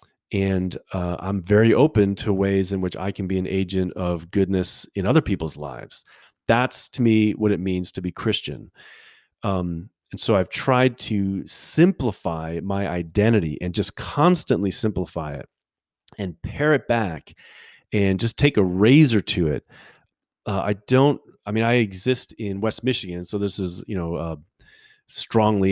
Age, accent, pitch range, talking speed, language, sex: 40-59, American, 90-110 Hz, 165 wpm, English, male